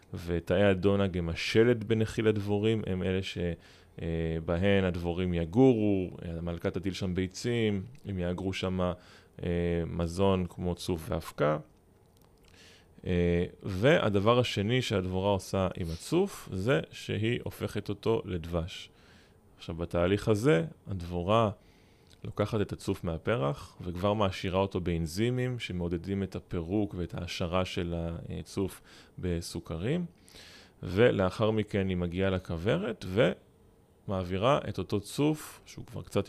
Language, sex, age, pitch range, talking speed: Hebrew, male, 30-49, 90-105 Hz, 105 wpm